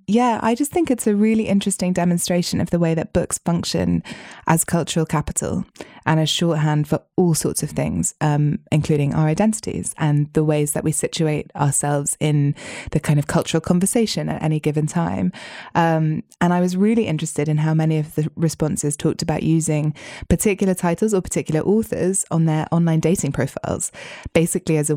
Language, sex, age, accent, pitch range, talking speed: English, female, 20-39, British, 150-180 Hz, 180 wpm